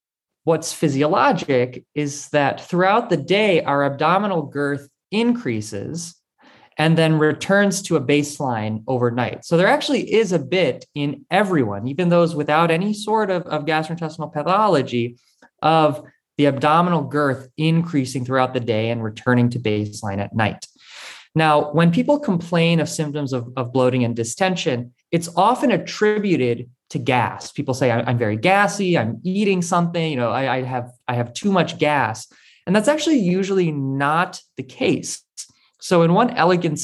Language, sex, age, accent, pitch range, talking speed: English, male, 20-39, American, 130-175 Hz, 155 wpm